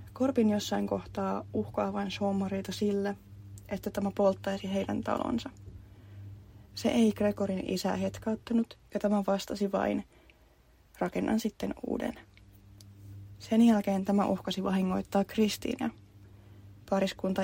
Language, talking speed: Finnish, 105 wpm